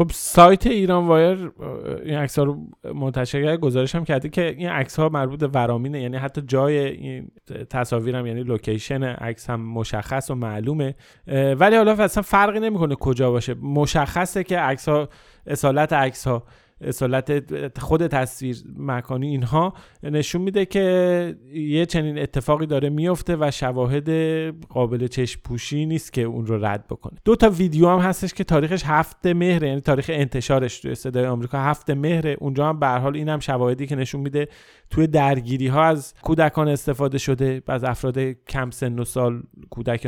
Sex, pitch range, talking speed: male, 130-170 Hz, 155 wpm